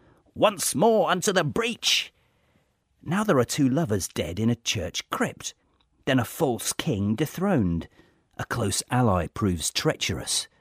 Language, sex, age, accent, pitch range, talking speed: English, male, 40-59, British, 95-140 Hz, 140 wpm